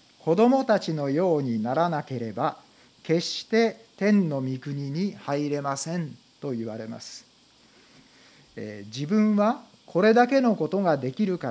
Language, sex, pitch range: Japanese, male, 130-200 Hz